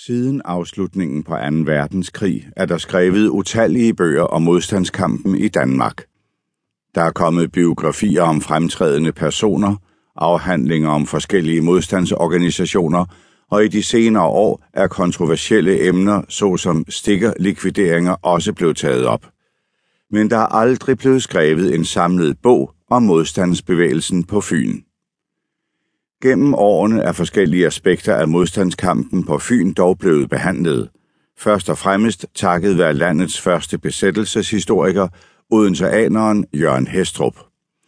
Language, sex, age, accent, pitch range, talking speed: Danish, male, 60-79, native, 85-105 Hz, 120 wpm